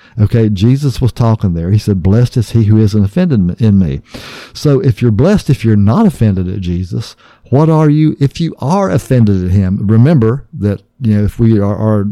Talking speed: 210 wpm